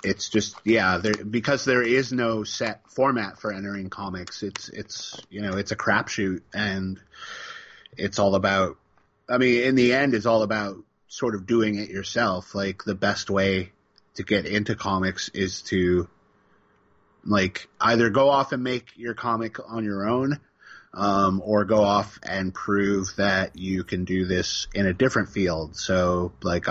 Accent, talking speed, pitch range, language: American, 170 wpm, 95-120 Hz, English